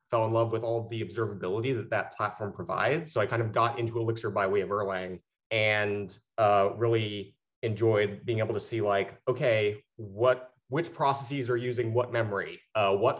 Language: English